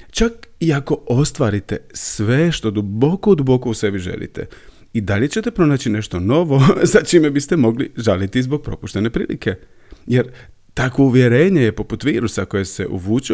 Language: Croatian